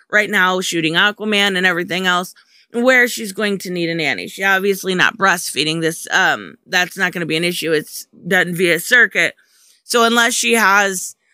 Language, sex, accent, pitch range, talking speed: English, female, American, 180-225 Hz, 185 wpm